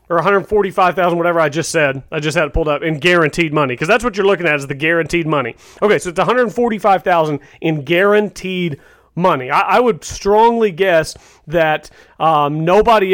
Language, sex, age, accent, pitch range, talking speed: English, male, 30-49, American, 160-200 Hz, 185 wpm